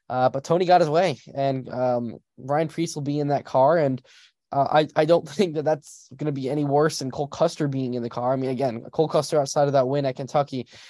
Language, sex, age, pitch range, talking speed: English, male, 10-29, 130-155 Hz, 255 wpm